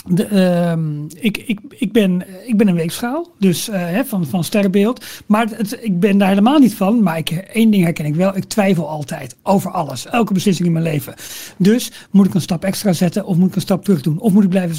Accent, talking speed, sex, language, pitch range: Dutch, 210 wpm, male, Dutch, 175-220 Hz